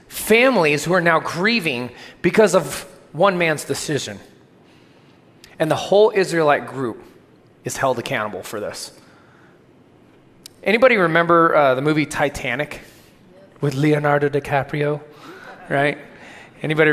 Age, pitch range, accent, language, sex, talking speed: 20-39, 140-170 Hz, American, English, male, 110 wpm